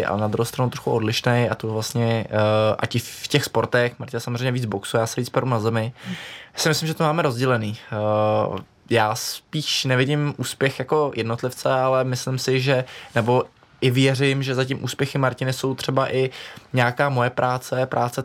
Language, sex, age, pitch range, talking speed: Czech, male, 20-39, 115-130 Hz, 180 wpm